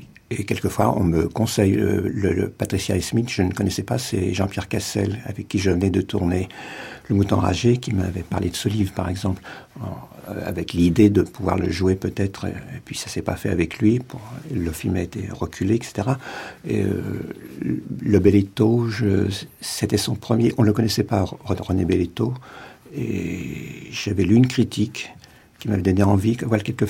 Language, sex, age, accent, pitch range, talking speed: French, male, 60-79, French, 95-115 Hz, 185 wpm